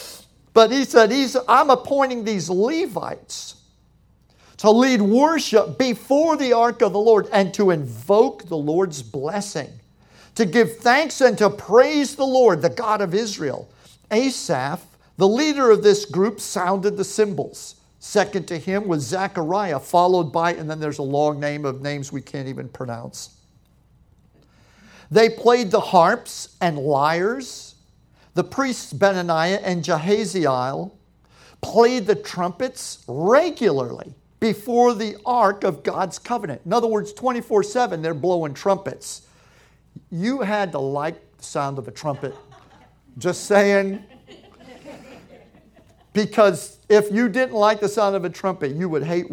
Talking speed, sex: 140 wpm, male